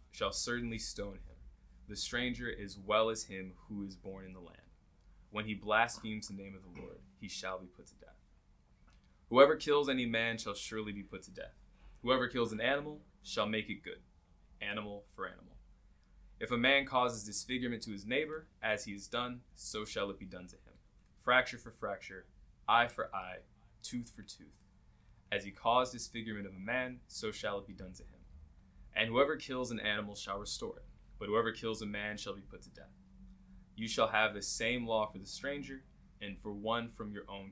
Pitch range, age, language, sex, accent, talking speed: 95-115 Hz, 20-39, English, male, American, 200 wpm